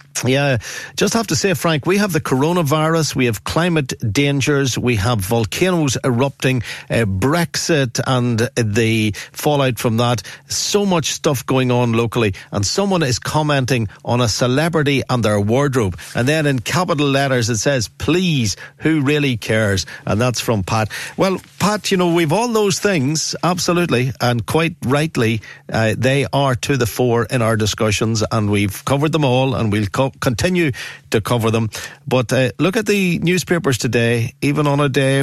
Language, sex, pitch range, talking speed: English, male, 115-145 Hz, 170 wpm